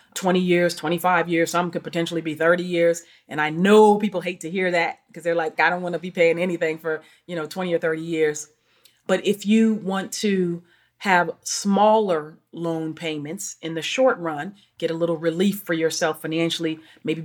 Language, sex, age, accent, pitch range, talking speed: English, female, 30-49, American, 160-185 Hz, 195 wpm